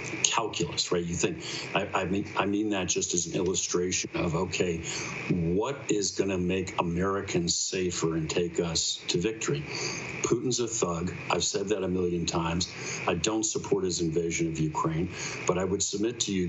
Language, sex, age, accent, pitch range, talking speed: English, male, 50-69, American, 85-100 Hz, 180 wpm